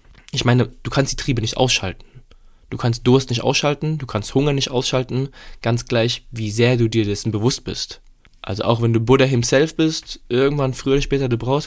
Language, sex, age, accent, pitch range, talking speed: German, male, 20-39, German, 110-140 Hz, 205 wpm